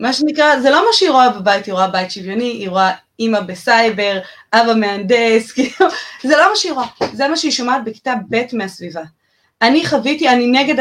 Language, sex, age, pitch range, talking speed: Hebrew, female, 20-39, 215-260 Hz, 190 wpm